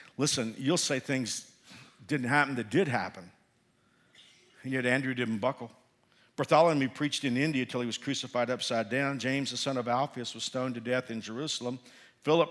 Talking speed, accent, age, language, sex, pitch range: 175 wpm, American, 50-69, English, male, 120-140 Hz